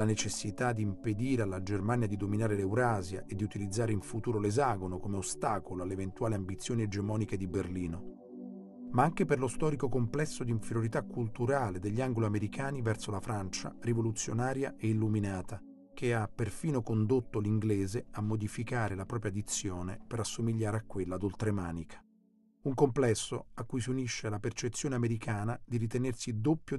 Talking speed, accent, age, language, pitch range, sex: 150 wpm, native, 40-59, Italian, 100-125 Hz, male